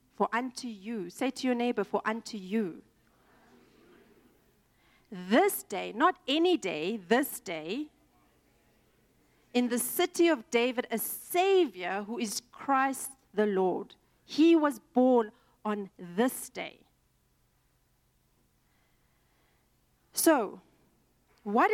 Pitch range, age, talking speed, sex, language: 200-275 Hz, 40-59, 100 wpm, female, English